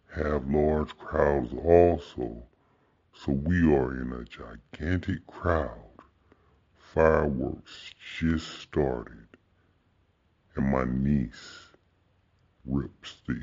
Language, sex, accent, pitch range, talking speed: English, female, American, 70-90 Hz, 85 wpm